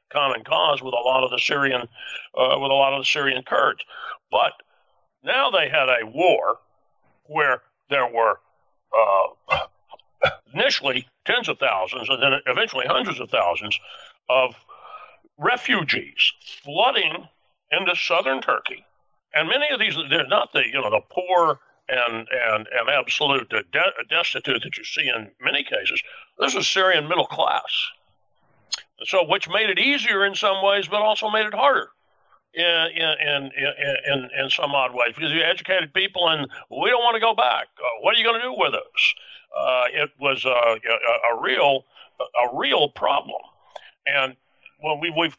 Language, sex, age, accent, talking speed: English, male, 60-79, American, 165 wpm